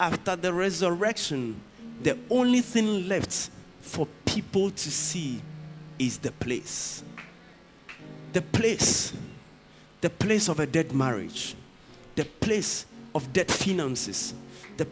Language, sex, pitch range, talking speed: English, male, 140-225 Hz, 115 wpm